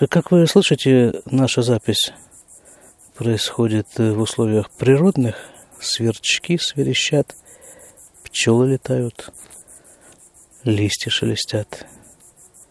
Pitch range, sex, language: 105-140 Hz, male, Russian